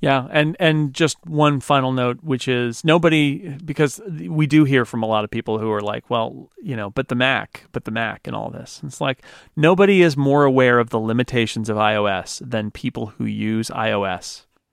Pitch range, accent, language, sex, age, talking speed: 115-150 Hz, American, English, male, 40-59, 205 wpm